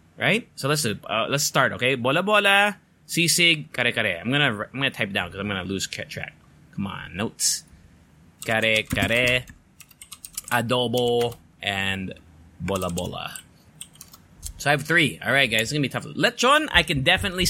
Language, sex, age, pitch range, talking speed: English, male, 20-39, 105-170 Hz, 165 wpm